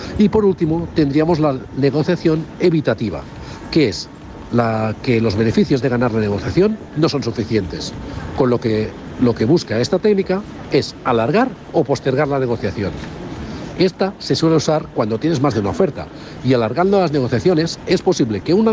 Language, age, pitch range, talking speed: Spanish, 60-79, 115-175 Hz, 165 wpm